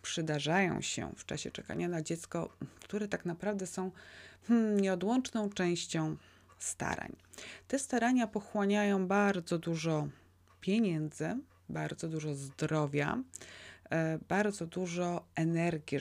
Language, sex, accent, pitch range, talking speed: Polish, female, native, 150-185 Hz, 95 wpm